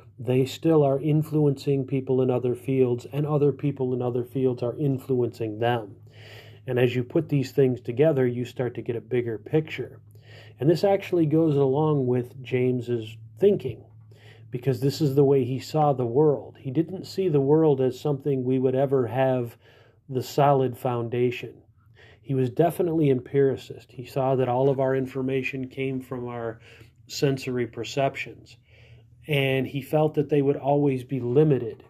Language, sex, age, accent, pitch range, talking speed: English, male, 40-59, American, 120-145 Hz, 165 wpm